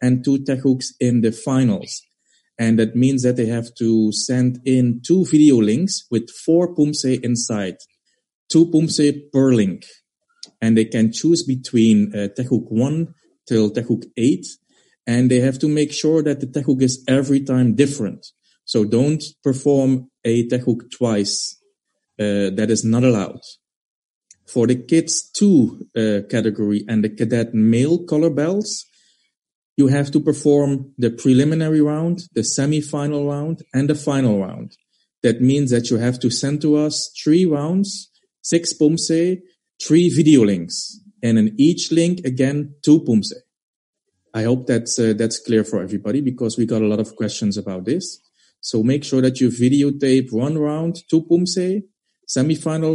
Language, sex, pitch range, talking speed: Spanish, male, 115-155 Hz, 160 wpm